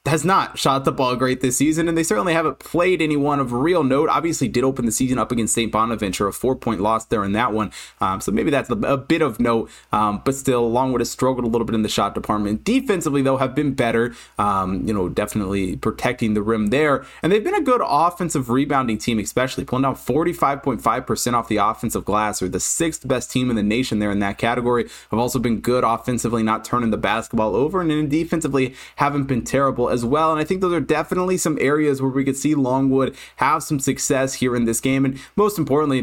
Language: English